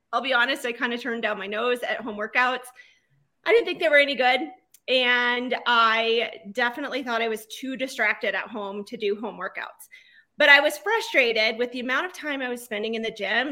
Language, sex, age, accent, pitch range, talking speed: English, female, 30-49, American, 220-290 Hz, 220 wpm